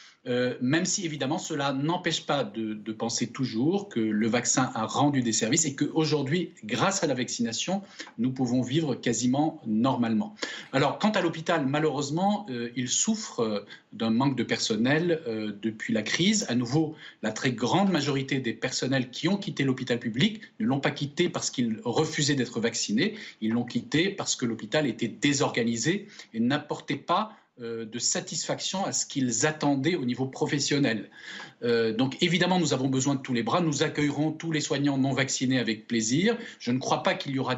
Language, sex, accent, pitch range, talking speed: French, male, French, 125-165 Hz, 180 wpm